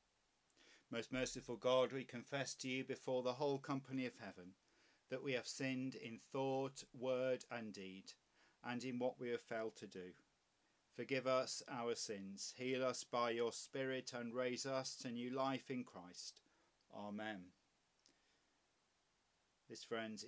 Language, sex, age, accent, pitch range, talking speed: English, male, 40-59, British, 120-135 Hz, 150 wpm